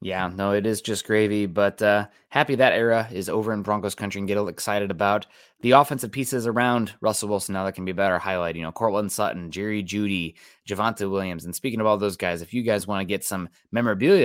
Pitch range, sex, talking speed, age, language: 95-115 Hz, male, 240 wpm, 20-39, English